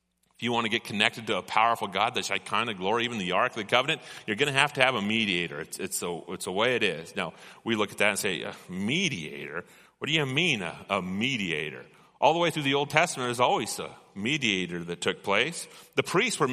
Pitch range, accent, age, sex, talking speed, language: 105-140 Hz, American, 30-49, male, 250 wpm, English